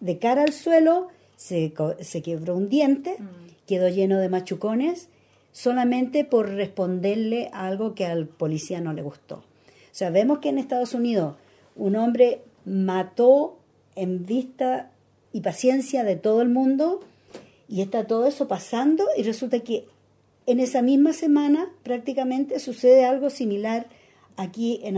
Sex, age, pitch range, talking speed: female, 50-69, 185-260 Hz, 140 wpm